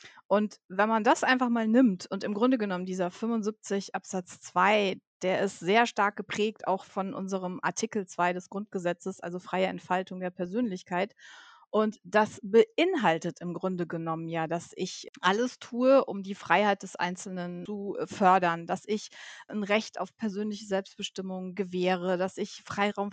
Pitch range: 185-215 Hz